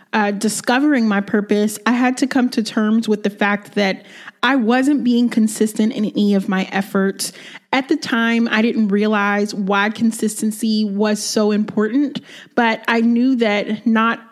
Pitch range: 210-240 Hz